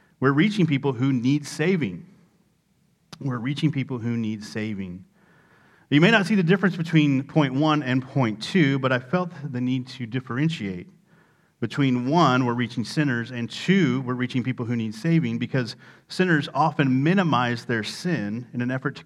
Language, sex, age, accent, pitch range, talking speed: English, male, 40-59, American, 125-175 Hz, 170 wpm